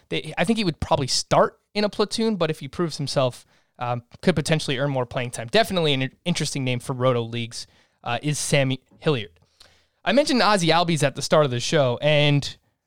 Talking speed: 205 wpm